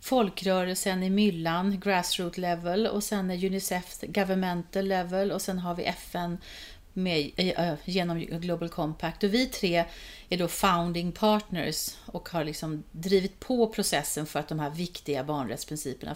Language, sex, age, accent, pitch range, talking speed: Swedish, female, 30-49, native, 160-200 Hz, 135 wpm